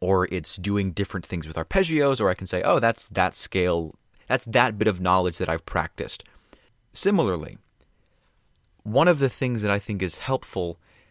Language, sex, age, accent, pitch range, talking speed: English, male, 30-49, American, 90-115 Hz, 180 wpm